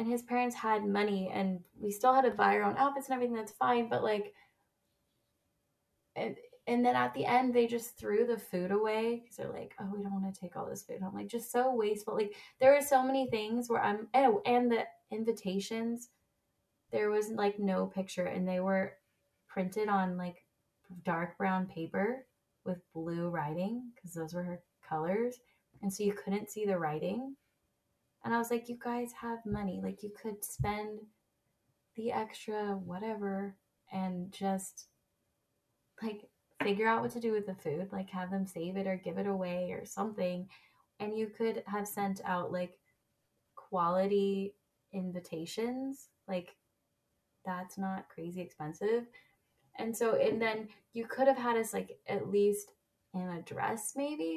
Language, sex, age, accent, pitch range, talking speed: English, female, 10-29, American, 185-230 Hz, 175 wpm